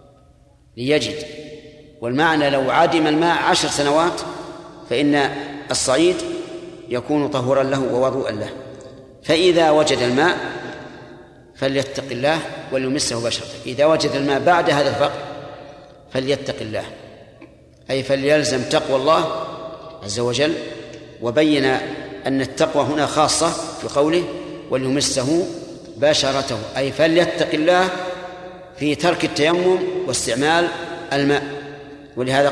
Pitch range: 135-160 Hz